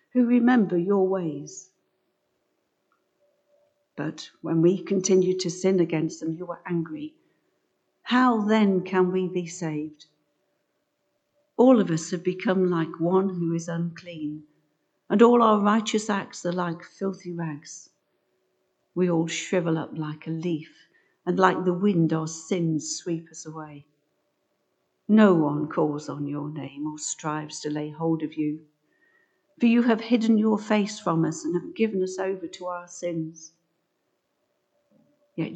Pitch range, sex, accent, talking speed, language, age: 165-205 Hz, female, British, 145 wpm, English, 50-69